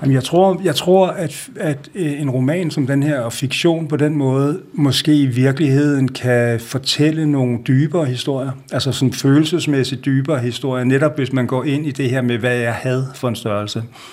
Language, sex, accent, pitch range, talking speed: Danish, male, native, 120-140 Hz, 185 wpm